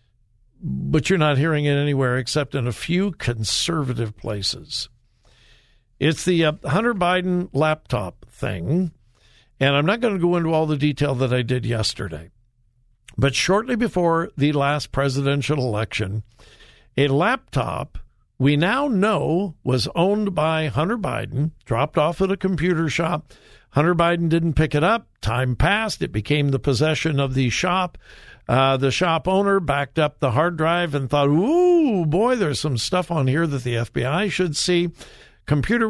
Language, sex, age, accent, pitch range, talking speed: English, male, 60-79, American, 130-180 Hz, 155 wpm